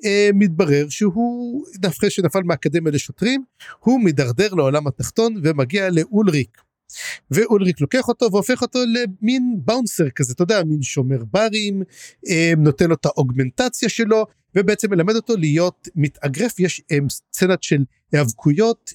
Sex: male